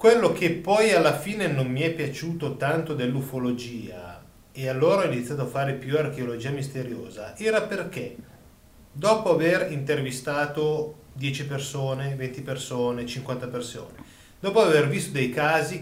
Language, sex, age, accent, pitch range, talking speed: Italian, male, 30-49, native, 115-155 Hz, 135 wpm